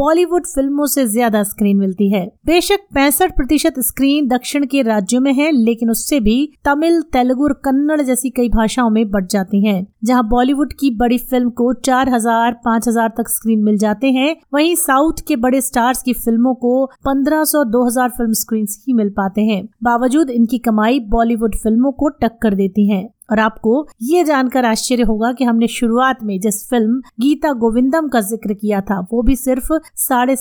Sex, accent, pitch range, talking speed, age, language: female, native, 225-275 Hz, 175 wpm, 30-49, Hindi